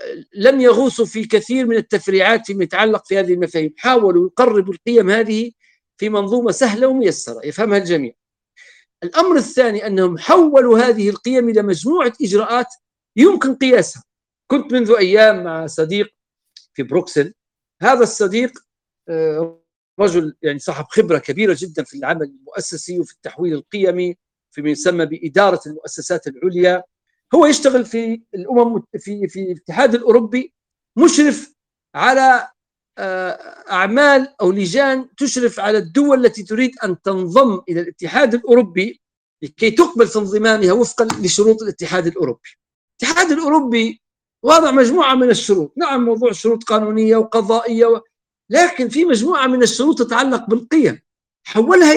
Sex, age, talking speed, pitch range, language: male, 50-69, 120 wpm, 185-255 Hz, Arabic